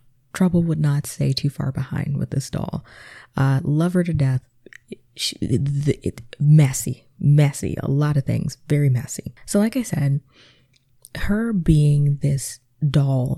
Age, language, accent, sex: 20-39, English, American, female